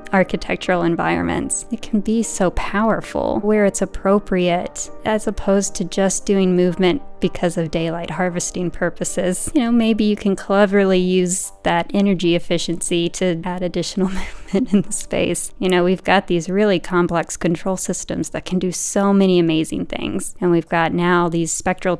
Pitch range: 175-200 Hz